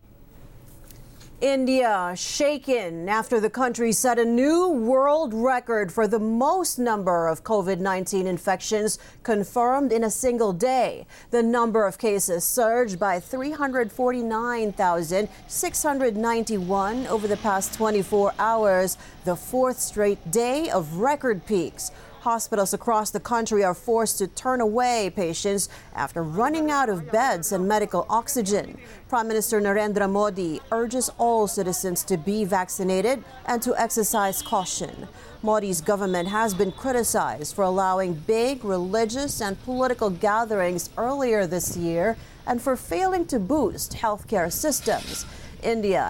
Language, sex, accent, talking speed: English, female, American, 125 wpm